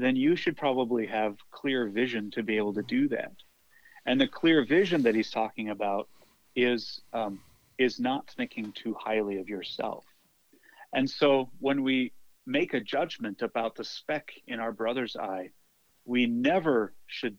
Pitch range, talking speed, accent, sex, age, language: 110-135 Hz, 160 wpm, American, male, 40-59, English